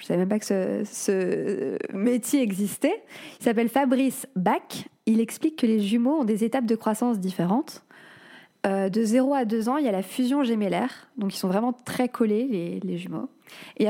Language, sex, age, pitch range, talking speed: French, female, 20-39, 205-255 Hz, 205 wpm